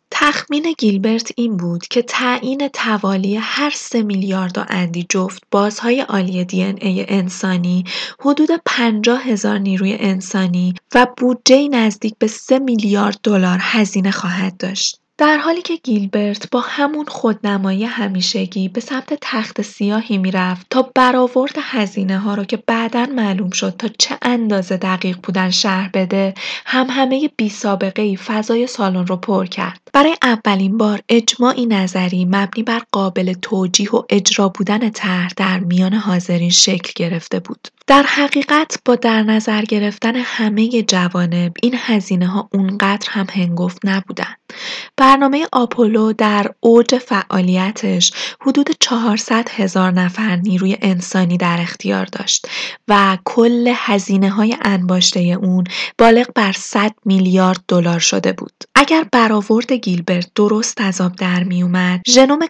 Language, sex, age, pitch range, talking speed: Persian, female, 20-39, 190-240 Hz, 135 wpm